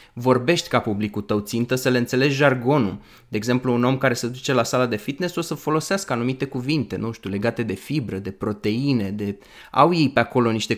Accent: native